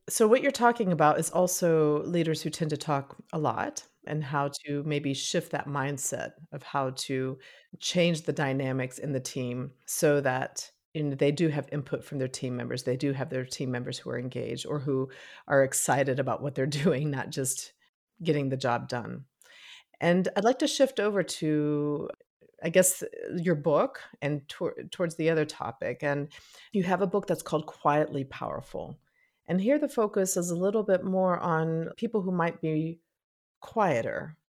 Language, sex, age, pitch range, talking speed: English, female, 40-59, 140-180 Hz, 180 wpm